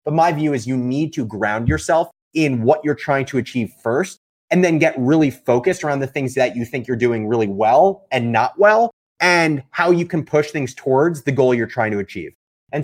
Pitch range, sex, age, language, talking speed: 130-165 Hz, male, 30-49, English, 225 wpm